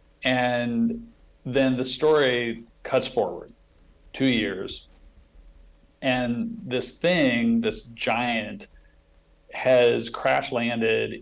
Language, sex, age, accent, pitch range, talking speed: English, male, 40-59, American, 110-130 Hz, 80 wpm